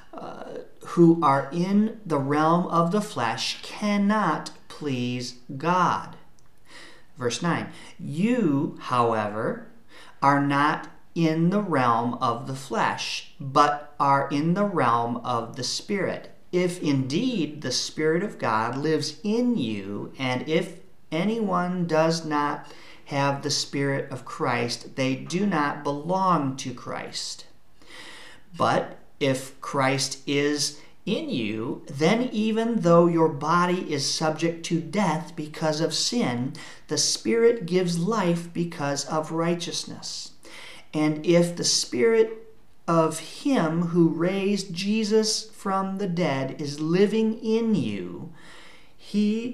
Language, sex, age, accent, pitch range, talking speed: English, male, 40-59, American, 140-180 Hz, 120 wpm